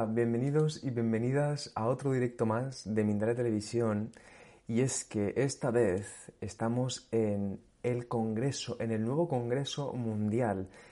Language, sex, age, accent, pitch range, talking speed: Spanish, male, 30-49, Spanish, 110-130 Hz, 130 wpm